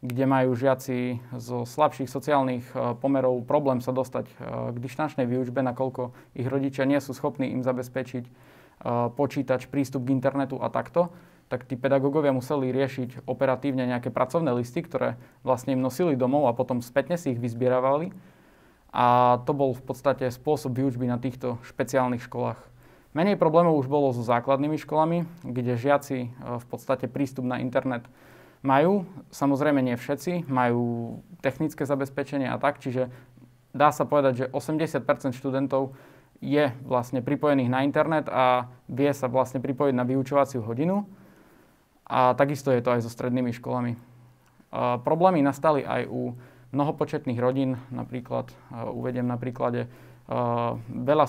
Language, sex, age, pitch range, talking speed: Slovak, male, 20-39, 125-140 Hz, 140 wpm